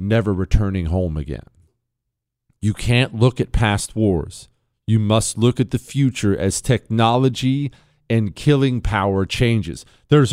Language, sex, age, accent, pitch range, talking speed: English, male, 40-59, American, 110-160 Hz, 135 wpm